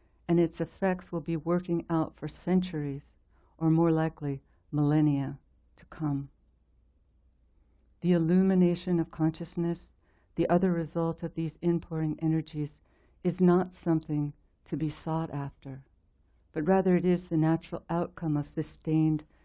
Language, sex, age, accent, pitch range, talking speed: English, female, 60-79, American, 100-165 Hz, 130 wpm